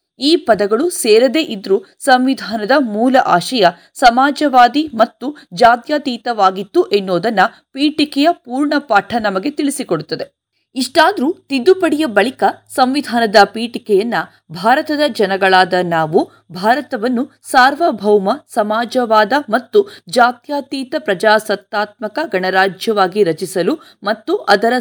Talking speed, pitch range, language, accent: 80 wpm, 205-290 Hz, Kannada, native